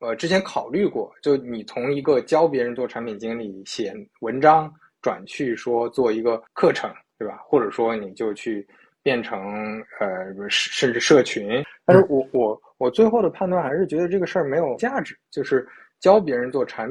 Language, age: Chinese, 20-39